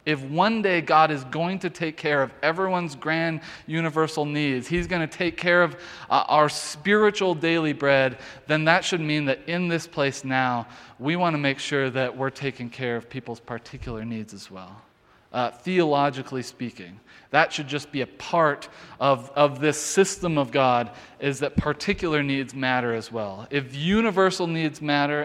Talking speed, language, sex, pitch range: 175 wpm, English, male, 135-170 Hz